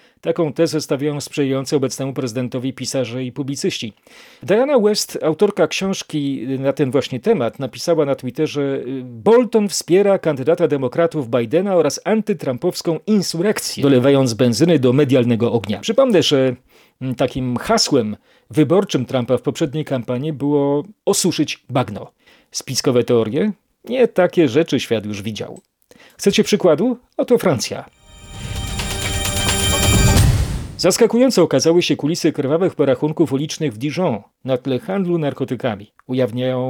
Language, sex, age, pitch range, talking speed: Polish, male, 40-59, 125-175 Hz, 115 wpm